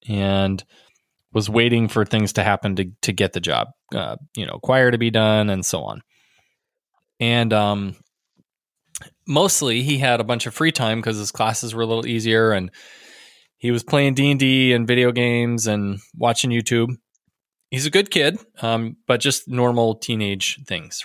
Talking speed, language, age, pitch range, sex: 170 wpm, English, 20-39, 105-125 Hz, male